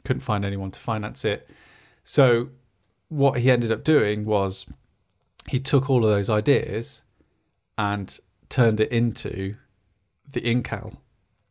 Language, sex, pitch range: English, male, 100-125 Hz